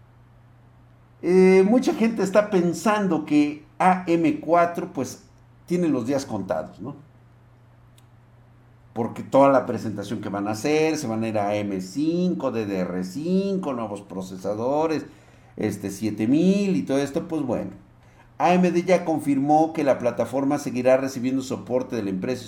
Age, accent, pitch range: 50-69, Mexican, 110-150 Hz